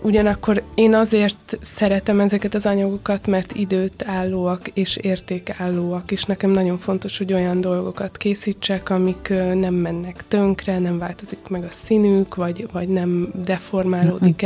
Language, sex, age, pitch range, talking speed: Hungarian, female, 20-39, 180-200 Hz, 135 wpm